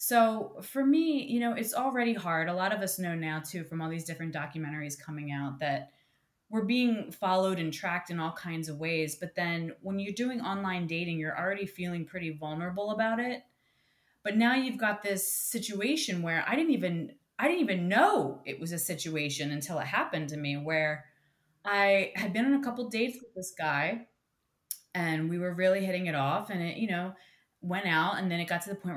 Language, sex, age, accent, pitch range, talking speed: English, female, 20-39, American, 160-215 Hz, 210 wpm